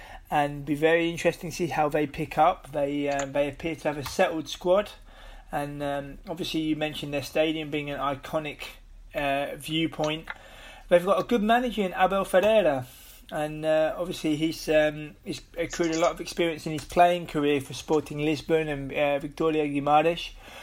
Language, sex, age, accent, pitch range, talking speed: English, male, 30-49, British, 145-170 Hz, 175 wpm